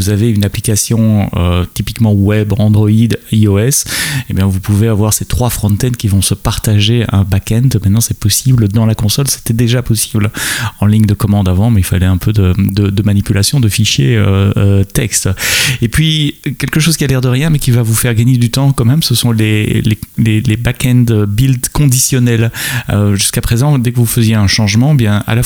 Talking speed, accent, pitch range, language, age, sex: 215 wpm, French, 100-120 Hz, French, 30-49, male